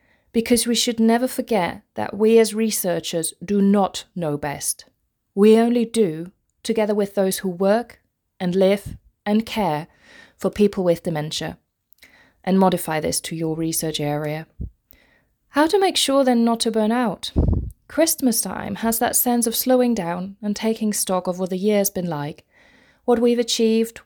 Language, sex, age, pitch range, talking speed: English, female, 30-49, 185-240 Hz, 160 wpm